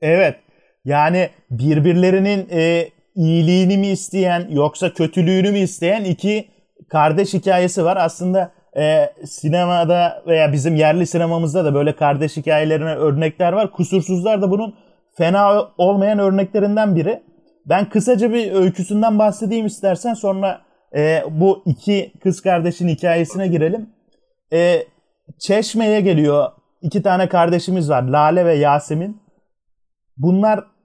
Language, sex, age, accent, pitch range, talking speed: Turkish, male, 30-49, native, 165-200 Hz, 115 wpm